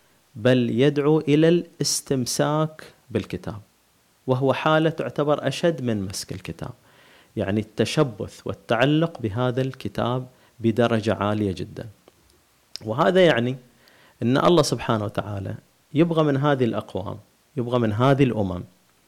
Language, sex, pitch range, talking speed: Arabic, male, 110-150 Hz, 105 wpm